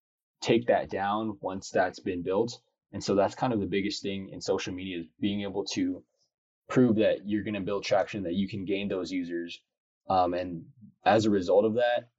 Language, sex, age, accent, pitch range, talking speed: English, male, 20-39, American, 95-115 Hz, 205 wpm